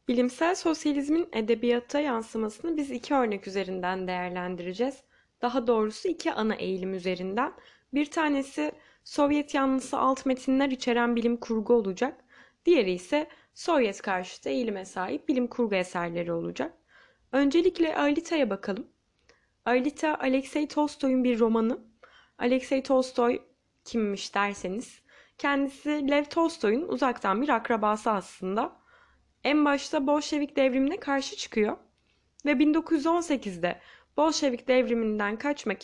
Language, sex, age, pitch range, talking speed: Turkish, female, 10-29, 220-295 Hz, 110 wpm